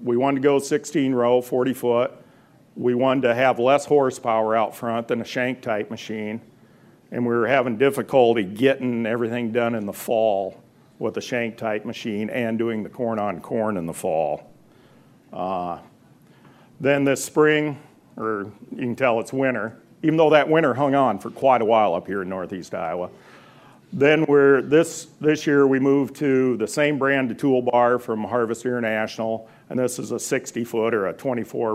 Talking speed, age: 180 wpm, 50-69